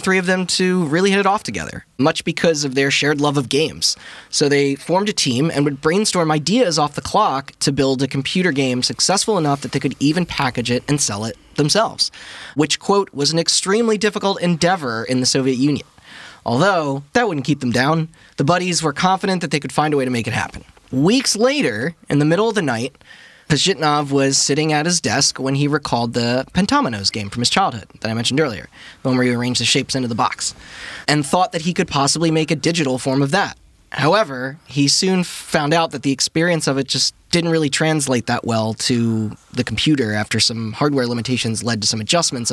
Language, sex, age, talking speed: English, male, 20-39, 215 wpm